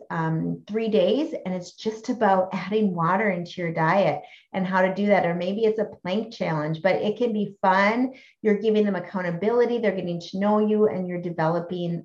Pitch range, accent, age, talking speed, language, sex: 175-220 Hz, American, 30-49, 200 wpm, English, female